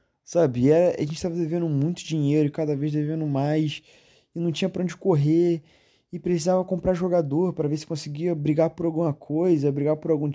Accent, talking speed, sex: Brazilian, 190 wpm, male